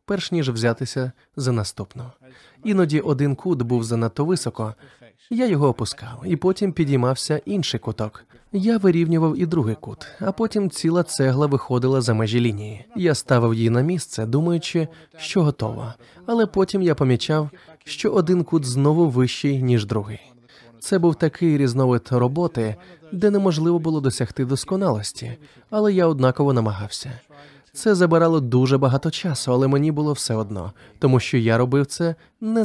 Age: 20-39